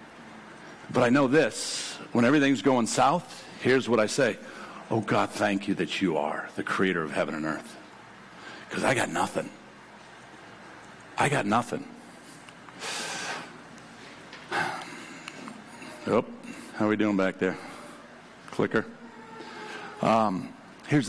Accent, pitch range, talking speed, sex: American, 135-185 Hz, 120 wpm, male